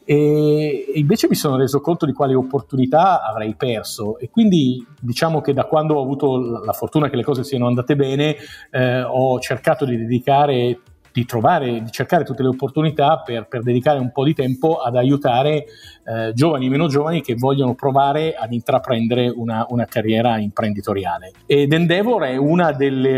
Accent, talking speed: native, 175 wpm